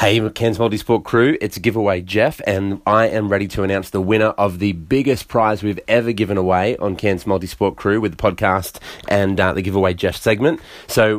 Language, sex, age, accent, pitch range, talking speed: English, male, 30-49, Australian, 95-110 Hz, 200 wpm